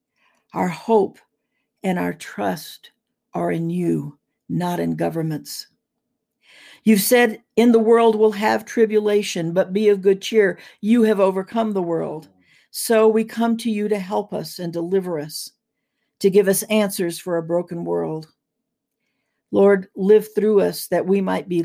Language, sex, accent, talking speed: English, female, American, 155 wpm